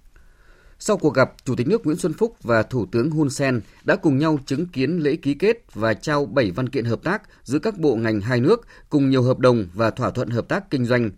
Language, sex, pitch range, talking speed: Vietnamese, male, 115-155 Hz, 245 wpm